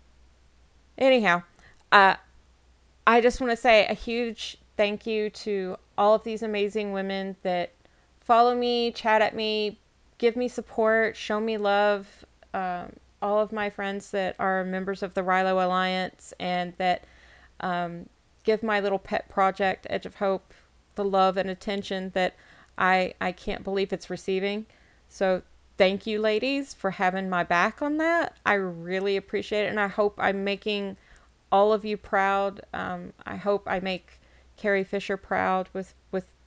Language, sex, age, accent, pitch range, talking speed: English, female, 30-49, American, 180-210 Hz, 160 wpm